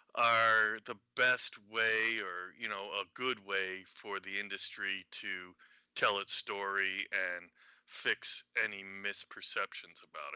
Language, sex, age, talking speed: English, male, 30-49, 125 wpm